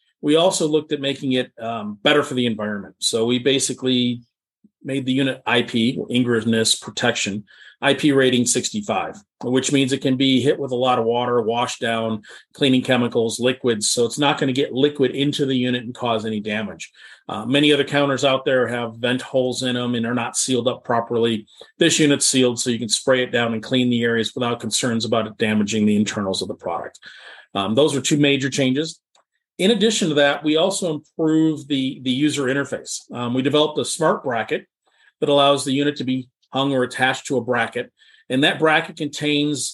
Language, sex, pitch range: English, male, 120-140 Hz